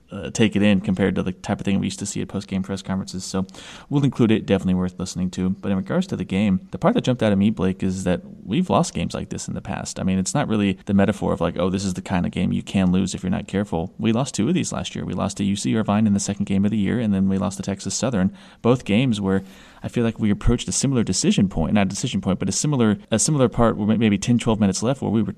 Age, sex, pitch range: 30-49, male, 100-125 Hz